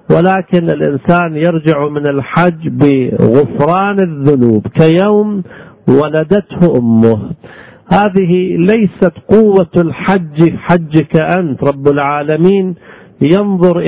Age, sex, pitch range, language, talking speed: 50-69, male, 145-190 Hz, Arabic, 80 wpm